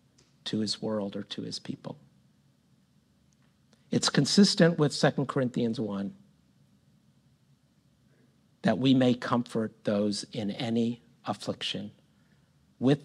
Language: English